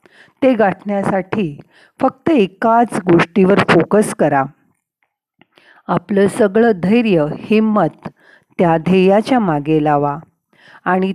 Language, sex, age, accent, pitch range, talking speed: Marathi, female, 40-59, native, 160-220 Hz, 85 wpm